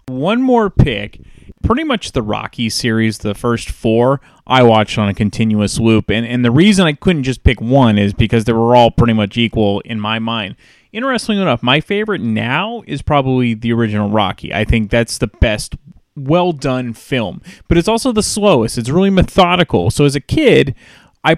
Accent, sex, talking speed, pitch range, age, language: American, male, 190 wpm, 115-150 Hz, 30-49, English